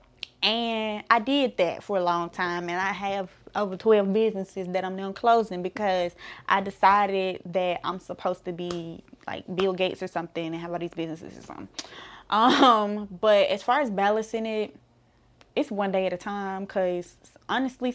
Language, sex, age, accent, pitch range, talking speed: English, female, 10-29, American, 180-215 Hz, 175 wpm